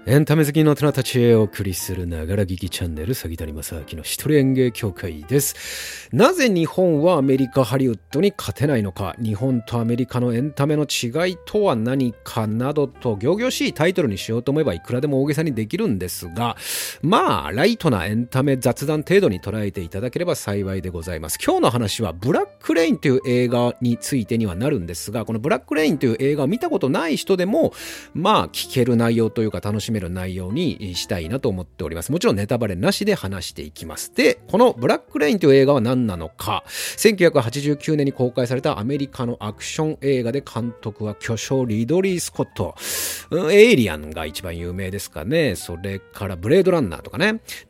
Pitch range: 100-150 Hz